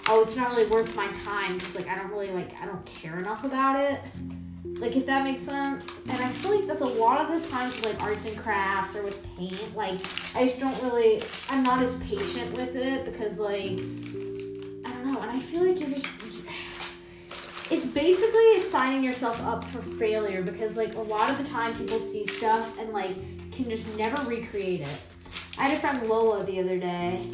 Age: 10-29